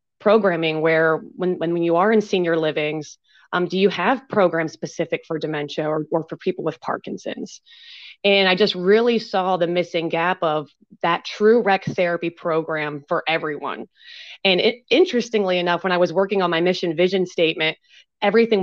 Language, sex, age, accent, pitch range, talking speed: English, female, 30-49, American, 160-190 Hz, 170 wpm